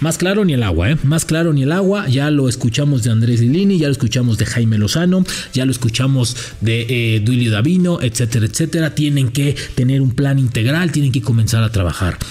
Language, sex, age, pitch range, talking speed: English, male, 40-59, 135-180 Hz, 210 wpm